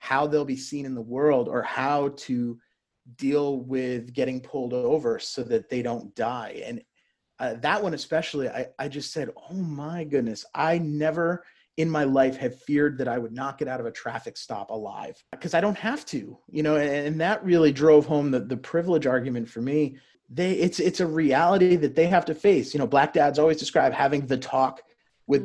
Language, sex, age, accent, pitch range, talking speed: English, male, 30-49, American, 130-160 Hz, 210 wpm